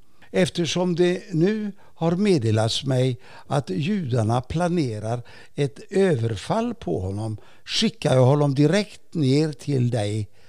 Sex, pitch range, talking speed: male, 125-175 Hz, 115 wpm